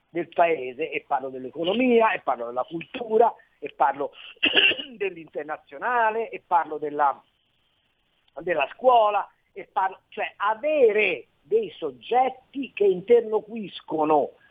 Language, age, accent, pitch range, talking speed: Italian, 50-69, native, 180-295 Hz, 105 wpm